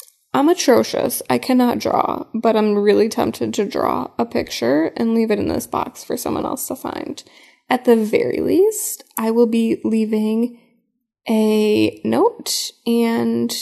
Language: English